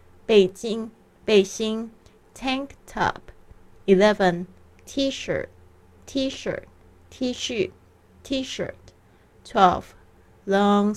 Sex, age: female, 30-49